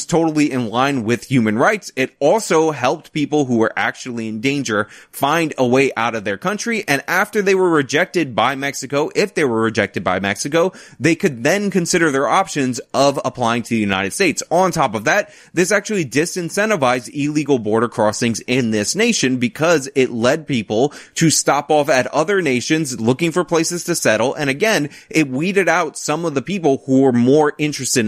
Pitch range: 120-165 Hz